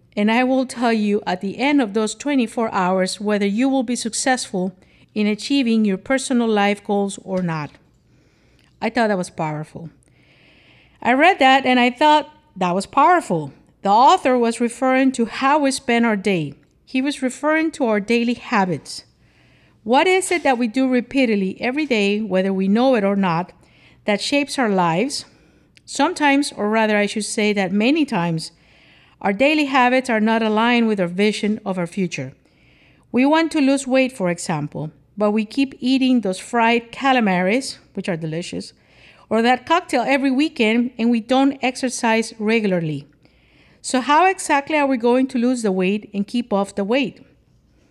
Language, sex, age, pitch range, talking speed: English, female, 50-69, 195-265 Hz, 175 wpm